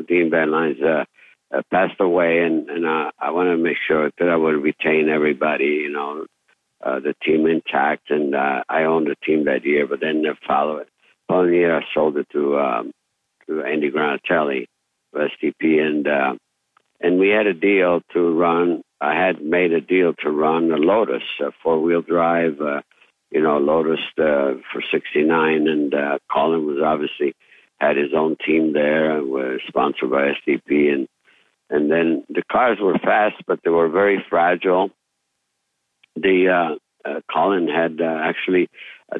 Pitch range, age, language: 75-85 Hz, 60-79, English